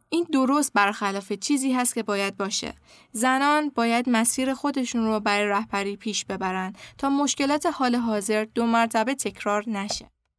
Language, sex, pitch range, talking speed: Persian, female, 210-270 Hz, 145 wpm